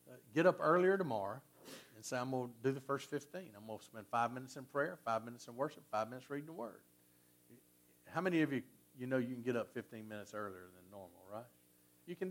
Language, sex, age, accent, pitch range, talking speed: English, male, 50-69, American, 100-145 Hz, 235 wpm